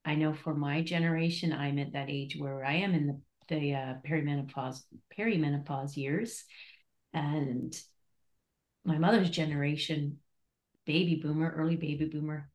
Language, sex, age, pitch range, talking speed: English, female, 40-59, 145-175 Hz, 135 wpm